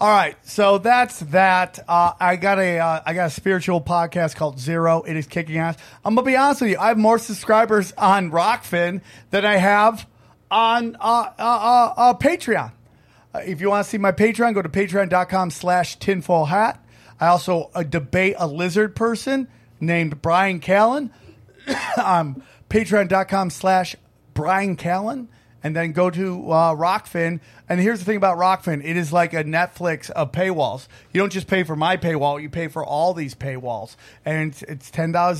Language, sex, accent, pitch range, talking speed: English, male, American, 165-205 Hz, 180 wpm